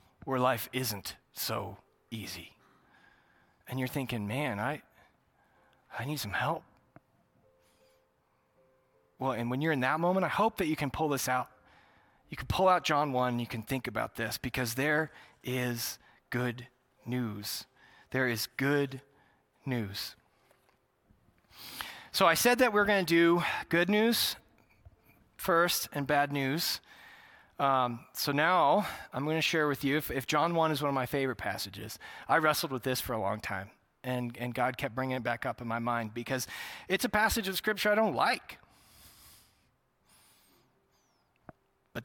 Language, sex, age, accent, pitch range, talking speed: English, male, 30-49, American, 125-170 Hz, 155 wpm